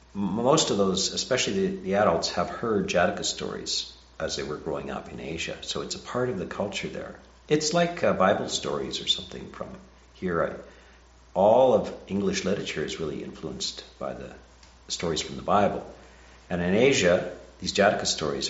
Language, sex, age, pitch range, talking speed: English, male, 50-69, 65-90 Hz, 170 wpm